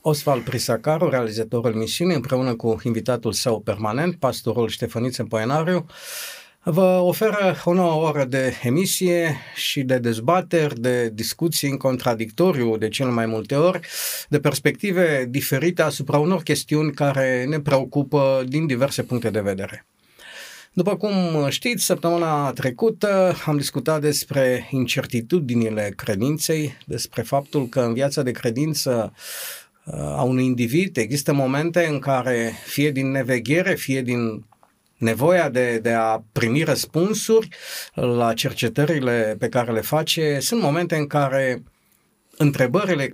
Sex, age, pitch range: male, 50-69, 120-160 Hz